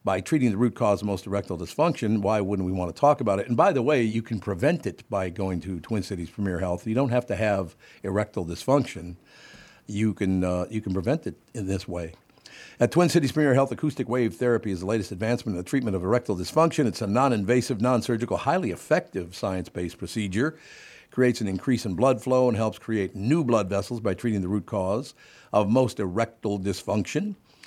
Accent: American